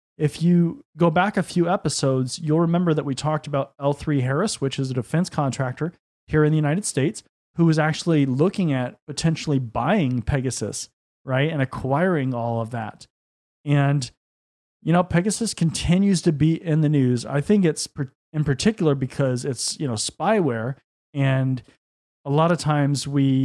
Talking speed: 165 wpm